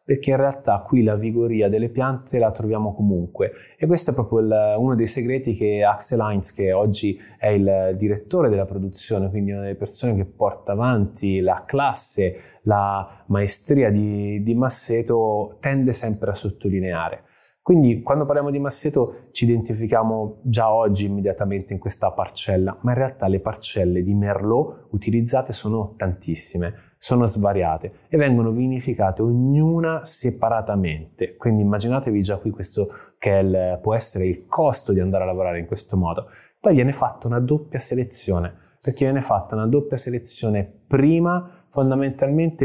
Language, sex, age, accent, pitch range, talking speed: Italian, male, 20-39, native, 100-125 Hz, 155 wpm